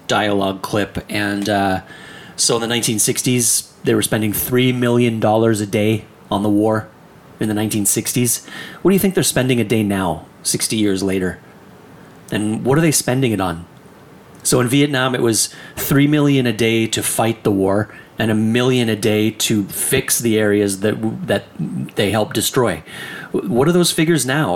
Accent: American